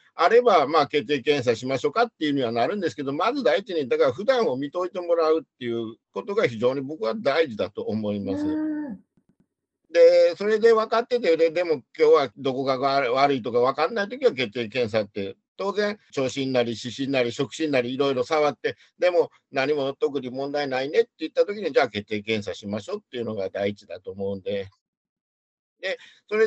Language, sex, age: Japanese, male, 50-69